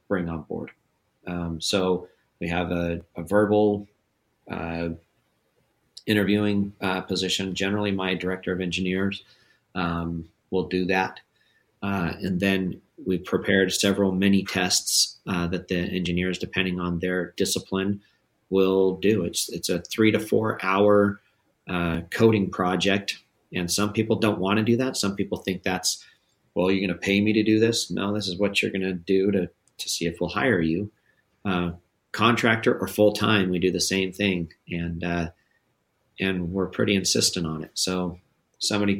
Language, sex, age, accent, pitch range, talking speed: English, male, 30-49, American, 90-100 Hz, 165 wpm